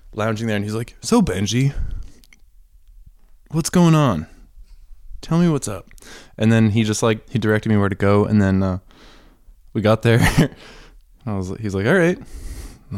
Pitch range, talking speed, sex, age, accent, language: 95-125 Hz, 175 wpm, male, 20-39, American, English